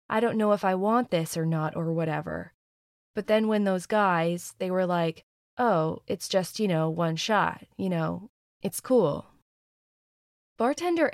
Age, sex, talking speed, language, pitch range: 20-39, female, 165 wpm, English, 175-215 Hz